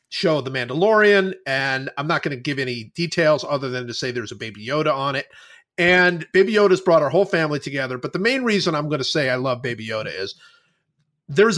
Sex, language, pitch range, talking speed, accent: male, English, 125-170 Hz, 225 wpm, American